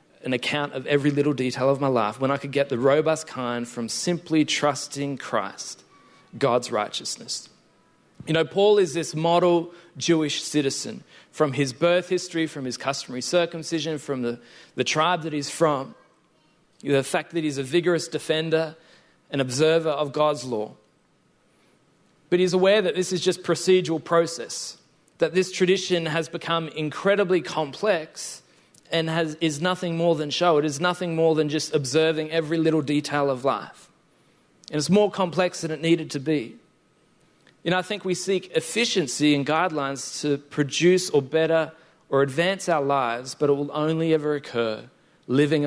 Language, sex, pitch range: English, male, 145-170 Hz